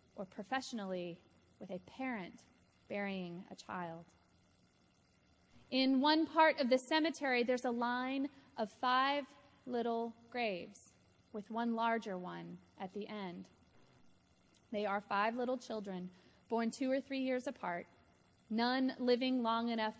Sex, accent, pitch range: female, American, 200-250 Hz